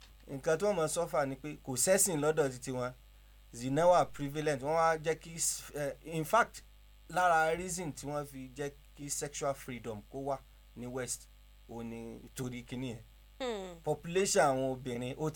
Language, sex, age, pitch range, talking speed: English, male, 30-49, 120-155 Hz, 90 wpm